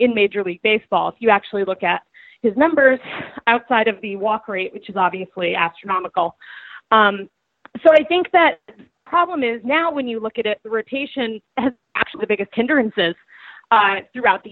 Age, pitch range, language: 30-49, 195-235 Hz, English